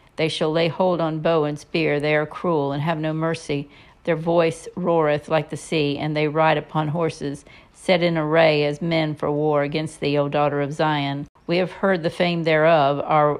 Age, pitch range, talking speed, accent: 50-69, 145-165 Hz, 205 wpm, American